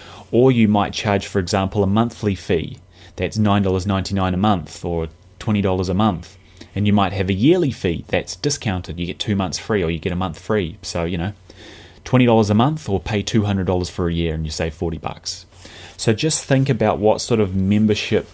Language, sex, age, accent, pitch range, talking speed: English, male, 20-39, Australian, 90-105 Hz, 205 wpm